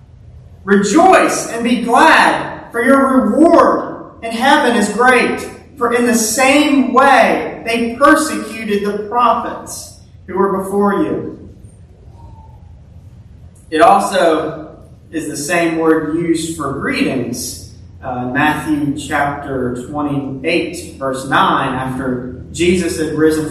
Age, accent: 30-49, American